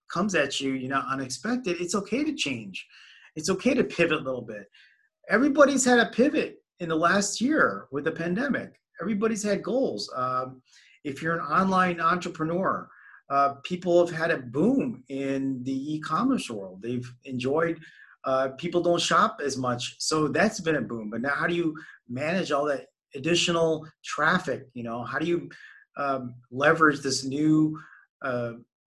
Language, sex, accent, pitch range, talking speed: English, male, American, 135-185 Hz, 165 wpm